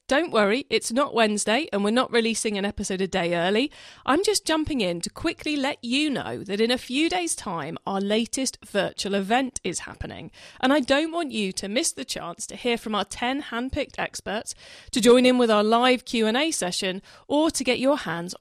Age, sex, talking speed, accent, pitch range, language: 40-59, female, 210 wpm, British, 200-275 Hz, English